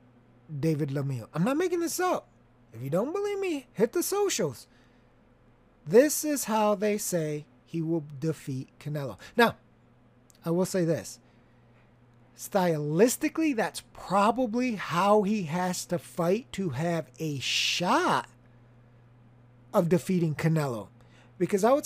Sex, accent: male, American